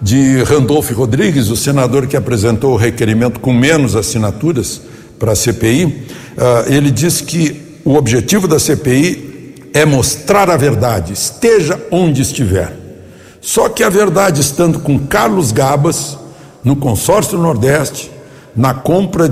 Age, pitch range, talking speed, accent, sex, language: 60-79, 120-160 Hz, 130 wpm, Brazilian, male, Portuguese